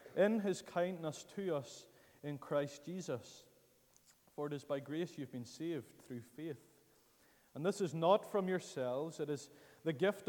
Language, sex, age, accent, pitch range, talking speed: English, male, 30-49, Irish, 135-180 Hz, 165 wpm